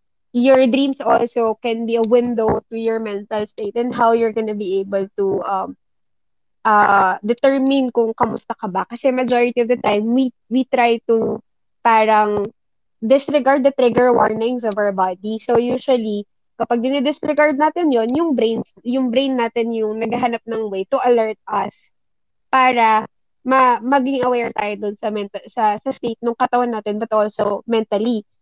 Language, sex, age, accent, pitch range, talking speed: Filipino, female, 20-39, native, 215-255 Hz, 165 wpm